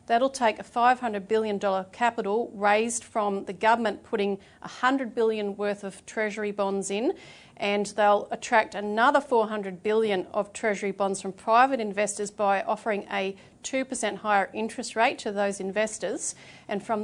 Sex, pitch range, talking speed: female, 195-225 Hz, 150 wpm